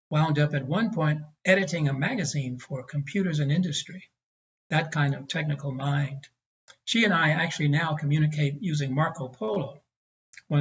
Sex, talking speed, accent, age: male, 155 wpm, American, 60-79